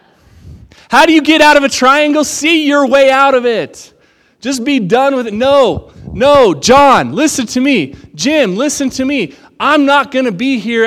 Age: 20-39